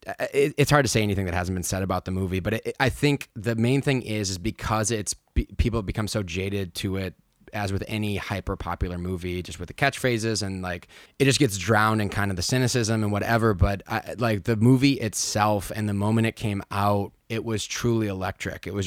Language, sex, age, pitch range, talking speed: English, male, 20-39, 100-125 Hz, 225 wpm